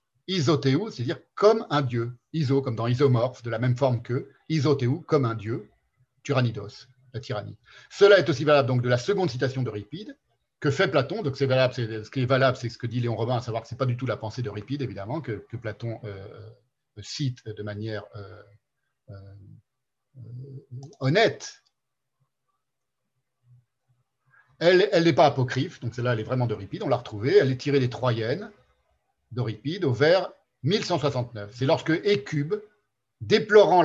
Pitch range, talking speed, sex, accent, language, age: 120-160 Hz, 195 wpm, male, French, French, 50-69